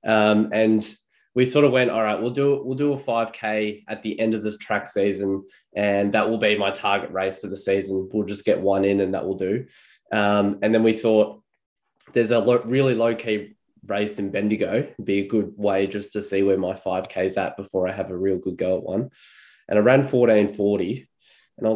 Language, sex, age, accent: English, male, 10-29, Australian